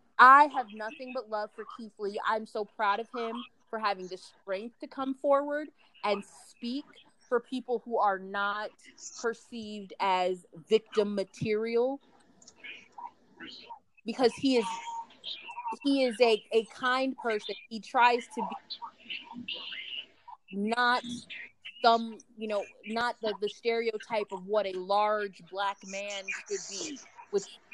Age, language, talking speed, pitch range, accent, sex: 20-39, English, 130 wpm, 195-245 Hz, American, female